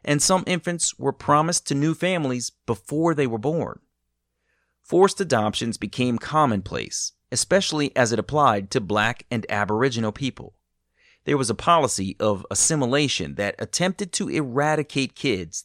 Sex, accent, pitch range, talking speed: male, American, 105-155 Hz, 140 wpm